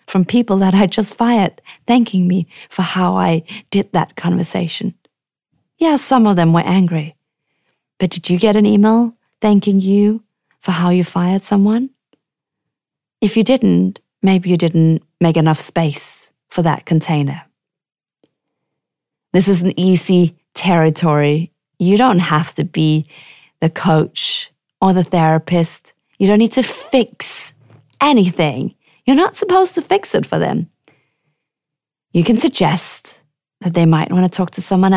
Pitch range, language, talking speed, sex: 160-215 Hz, English, 145 wpm, female